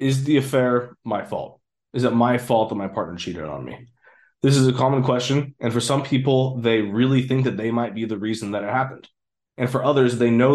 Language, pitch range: English, 110-130 Hz